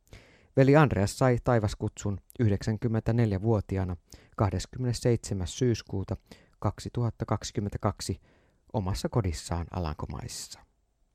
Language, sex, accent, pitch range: Finnish, male, native, 95-125 Hz